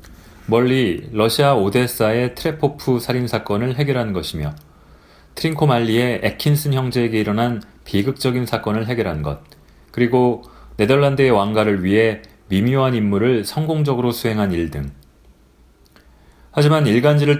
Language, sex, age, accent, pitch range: Korean, male, 30-49, native, 90-125 Hz